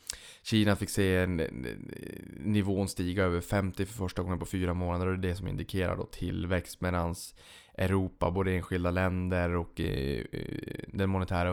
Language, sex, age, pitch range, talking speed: Swedish, male, 20-39, 90-100 Hz, 150 wpm